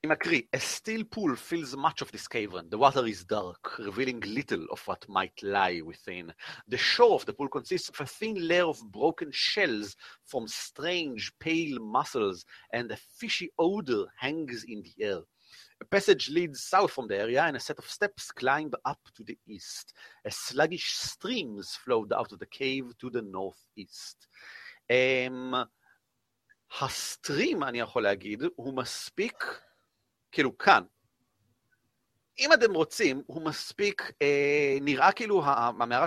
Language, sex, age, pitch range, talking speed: Hebrew, male, 40-59, 120-175 Hz, 155 wpm